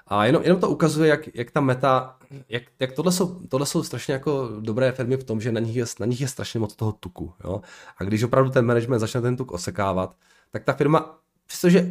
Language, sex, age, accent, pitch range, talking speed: Czech, male, 20-39, native, 95-130 Hz, 220 wpm